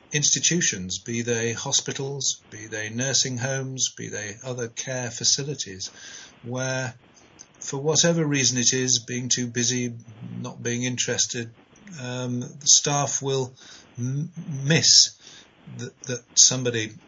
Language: English